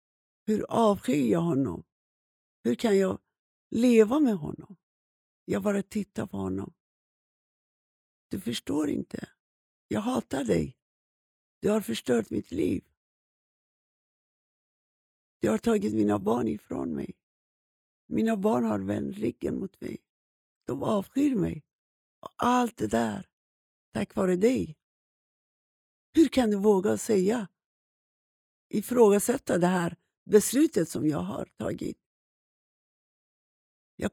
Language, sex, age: Swedish, female, 60-79